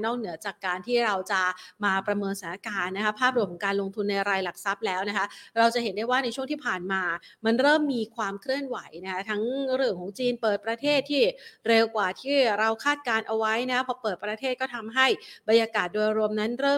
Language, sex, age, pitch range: Thai, female, 30-49, 195-240 Hz